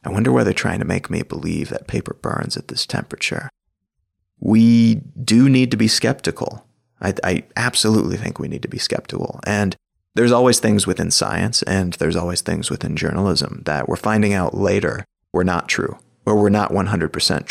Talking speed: 185 wpm